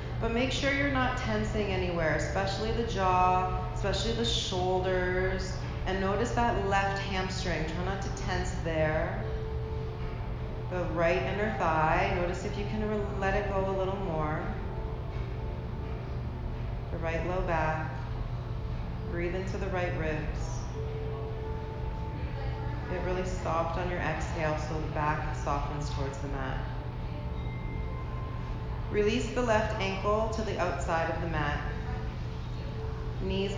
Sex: female